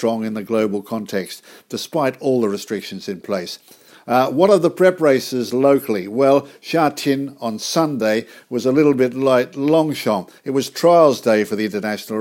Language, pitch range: English, 110-135 Hz